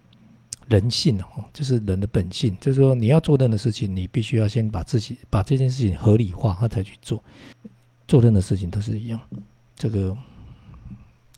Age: 50-69